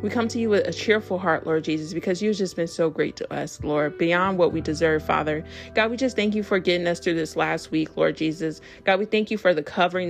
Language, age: English, 30-49